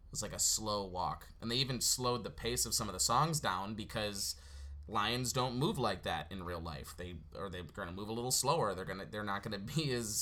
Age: 20-39